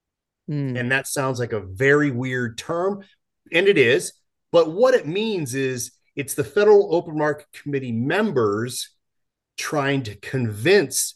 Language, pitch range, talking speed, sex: English, 115-145 Hz, 140 wpm, male